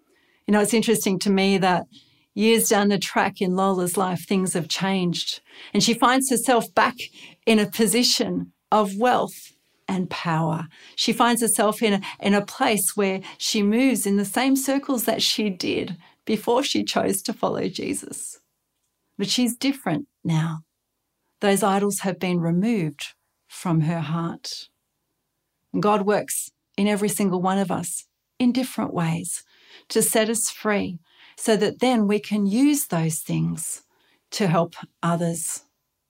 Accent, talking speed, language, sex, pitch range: Australian, 150 wpm, English, female, 170-225 Hz